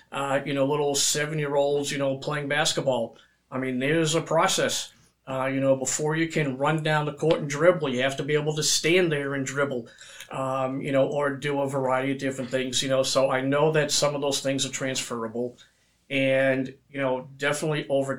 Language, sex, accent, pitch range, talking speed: English, male, American, 130-145 Hz, 210 wpm